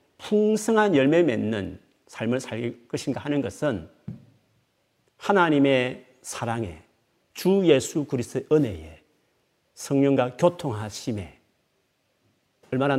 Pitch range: 110-160 Hz